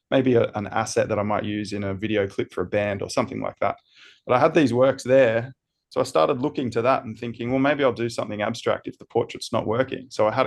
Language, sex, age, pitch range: English, male, 20-39, 105-125 Hz